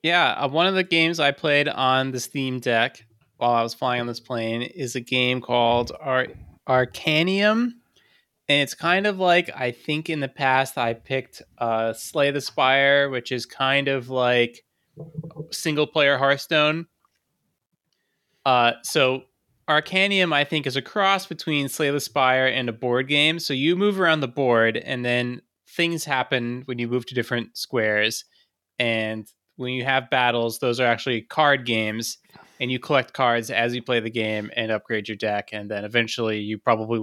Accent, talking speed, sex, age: American, 175 wpm, male, 20-39